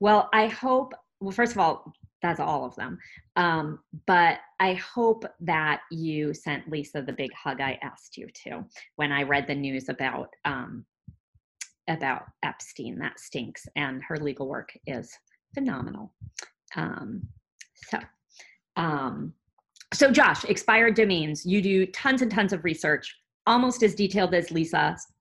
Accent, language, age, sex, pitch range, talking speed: American, English, 40-59, female, 160-235 Hz, 150 wpm